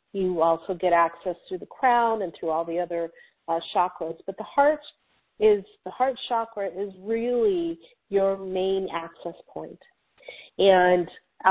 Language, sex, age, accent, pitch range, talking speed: English, female, 40-59, American, 170-205 Hz, 145 wpm